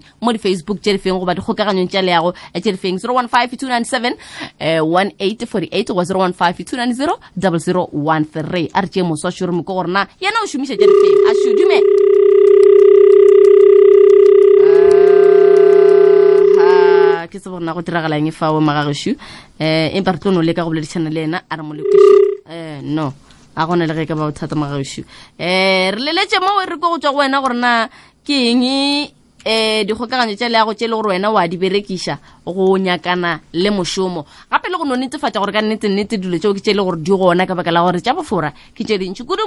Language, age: English, 20-39